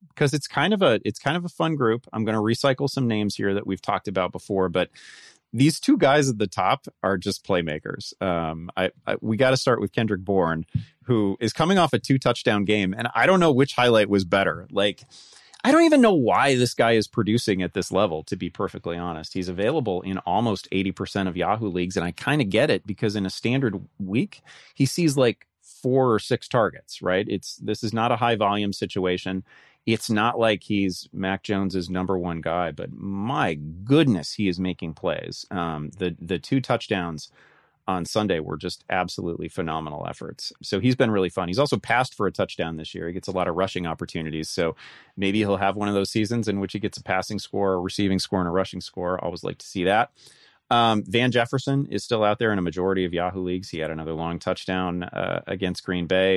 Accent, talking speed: American, 220 wpm